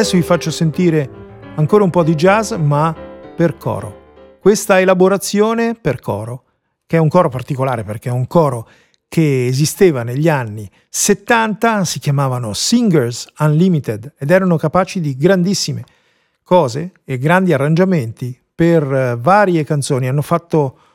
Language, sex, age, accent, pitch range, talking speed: Italian, male, 50-69, native, 135-185 Hz, 140 wpm